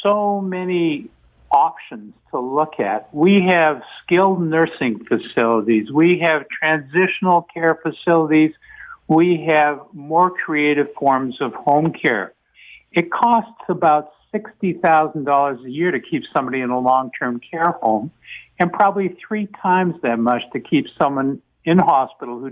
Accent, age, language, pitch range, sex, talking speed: American, 60-79, English, 140-175 Hz, male, 135 wpm